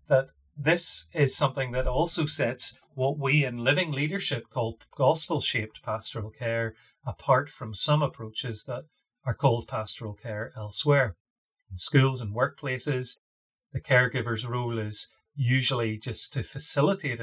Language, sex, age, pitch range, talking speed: English, male, 30-49, 115-150 Hz, 130 wpm